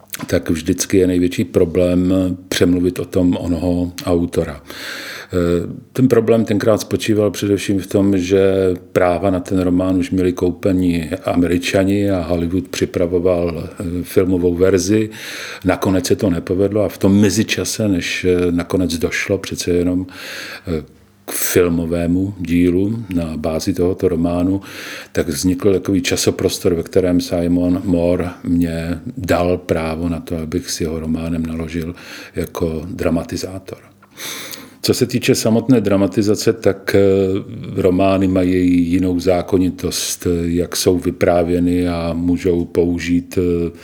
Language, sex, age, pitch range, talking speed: Czech, male, 50-69, 85-95 Hz, 120 wpm